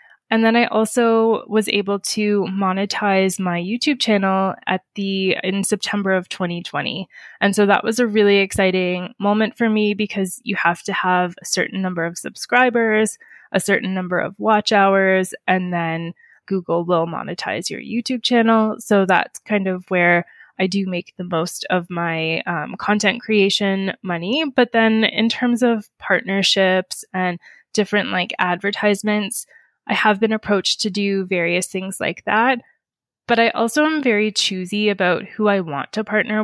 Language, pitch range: English, 185-220 Hz